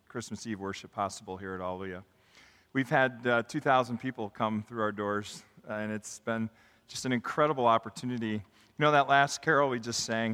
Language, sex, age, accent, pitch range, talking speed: English, male, 40-59, American, 110-125 Hz, 180 wpm